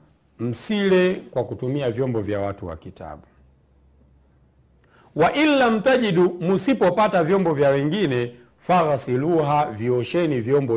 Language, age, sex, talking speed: Swahili, 50-69, male, 100 wpm